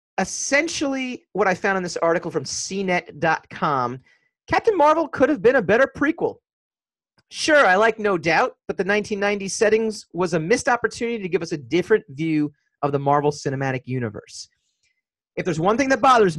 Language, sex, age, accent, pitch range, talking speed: English, male, 40-59, American, 155-220 Hz, 170 wpm